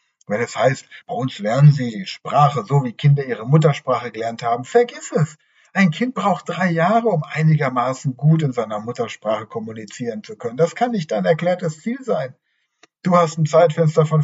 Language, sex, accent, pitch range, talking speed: German, male, German, 140-180 Hz, 185 wpm